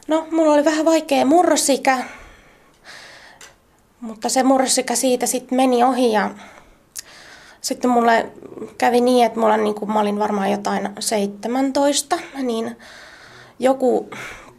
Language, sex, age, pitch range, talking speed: Finnish, female, 20-39, 215-280 Hz, 115 wpm